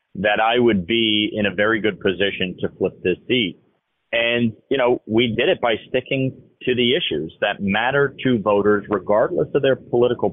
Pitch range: 100-115 Hz